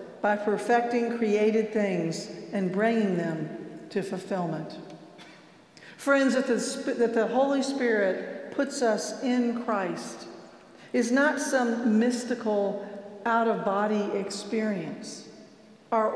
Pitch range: 200-240 Hz